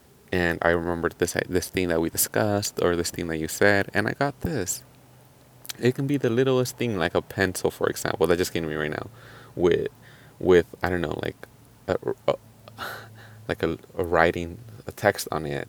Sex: male